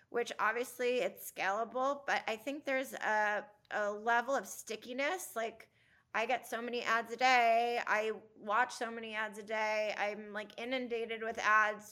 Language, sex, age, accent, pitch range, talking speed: English, female, 30-49, American, 210-240 Hz, 165 wpm